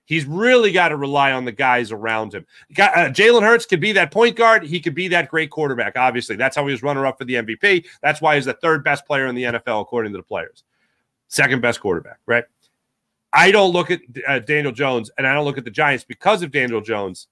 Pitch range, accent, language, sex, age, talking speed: 130-175 Hz, American, English, male, 30-49, 230 wpm